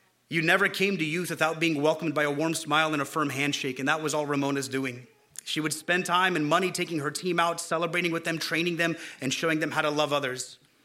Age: 30-49